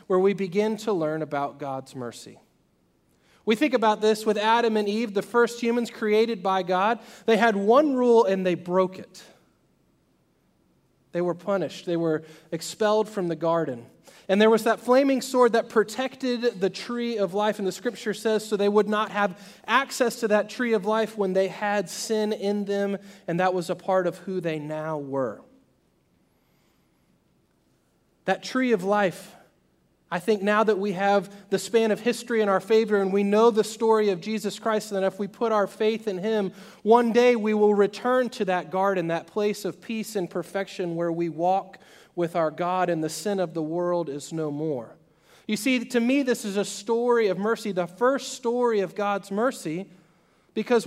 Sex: male